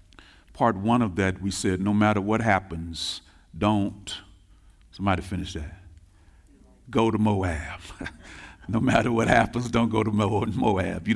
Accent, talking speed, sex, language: American, 140 wpm, male, English